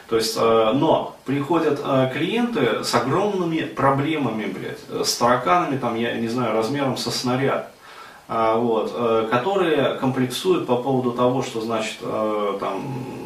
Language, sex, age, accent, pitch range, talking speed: Russian, male, 30-49, native, 120-145 Hz, 120 wpm